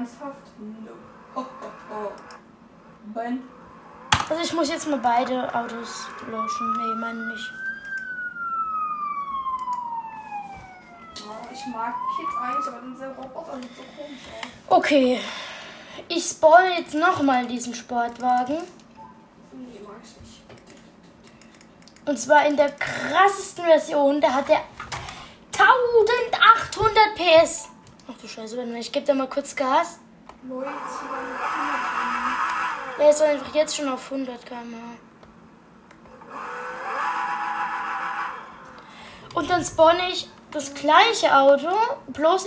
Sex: female